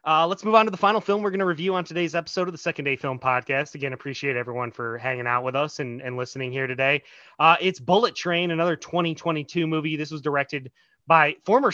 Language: English